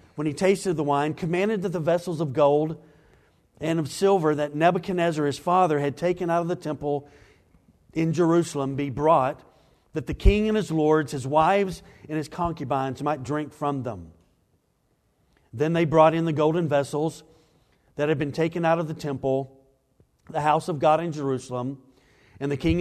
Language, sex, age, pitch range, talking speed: English, male, 50-69, 135-175 Hz, 175 wpm